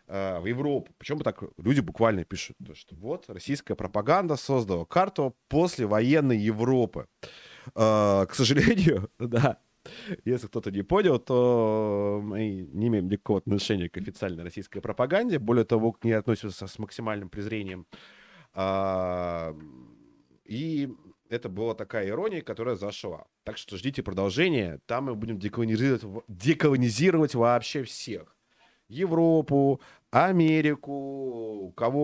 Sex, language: male, Russian